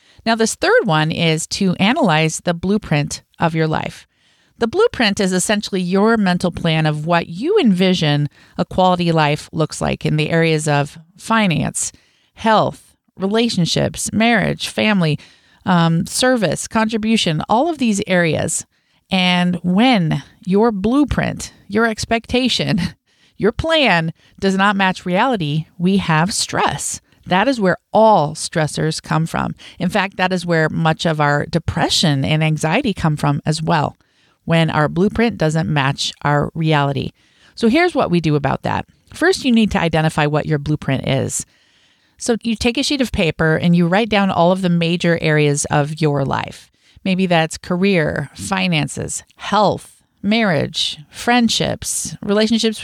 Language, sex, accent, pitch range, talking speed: English, female, American, 160-215 Hz, 150 wpm